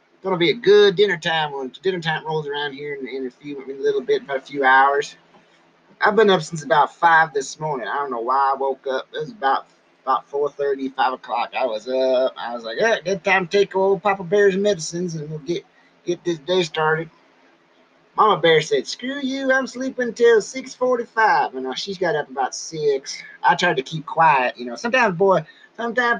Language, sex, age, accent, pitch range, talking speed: English, male, 30-49, American, 155-220 Hz, 220 wpm